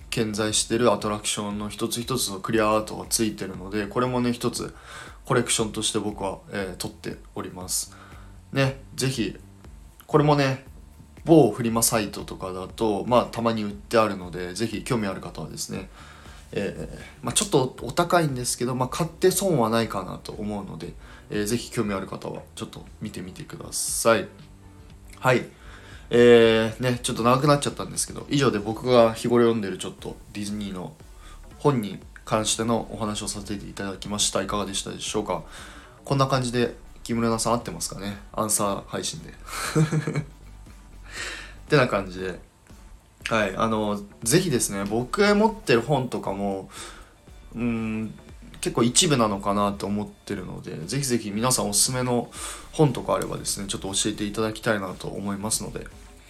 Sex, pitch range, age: male, 100-120 Hz, 20-39